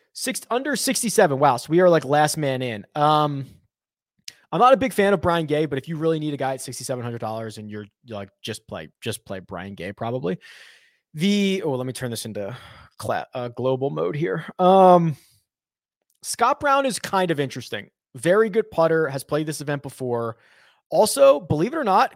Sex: male